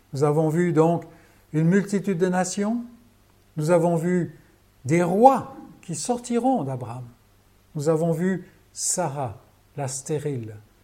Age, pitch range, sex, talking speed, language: 60-79, 125-200 Hz, male, 120 wpm, French